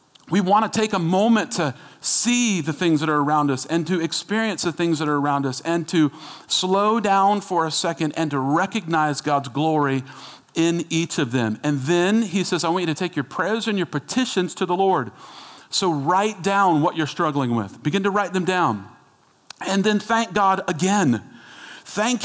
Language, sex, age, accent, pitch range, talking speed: English, male, 40-59, American, 145-195 Hz, 195 wpm